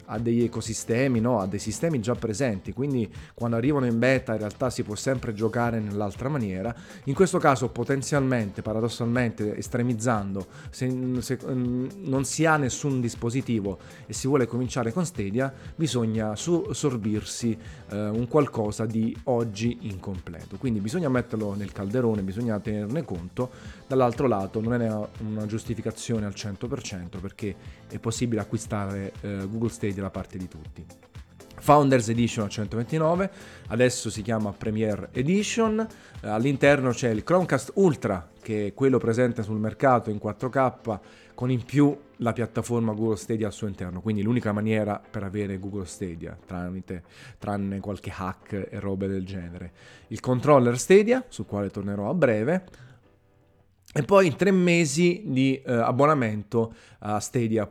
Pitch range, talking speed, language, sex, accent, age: 105-130 Hz, 140 wpm, Italian, male, native, 30-49